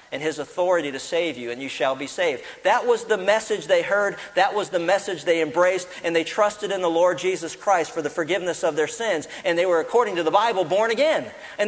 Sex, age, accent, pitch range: male, 40-59, American, 170-250 Hz